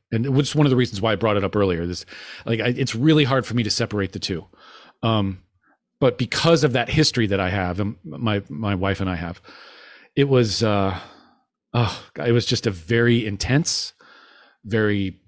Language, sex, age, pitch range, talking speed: English, male, 40-59, 105-140 Hz, 200 wpm